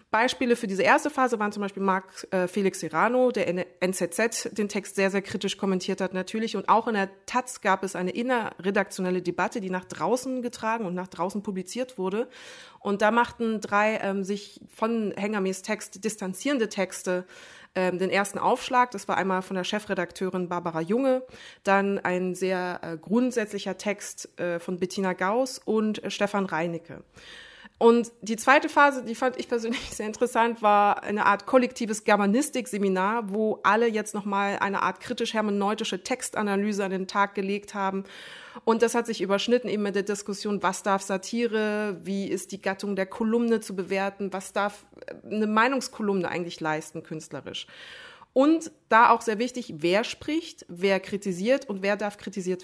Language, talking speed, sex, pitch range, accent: German, 170 wpm, female, 190-230 Hz, German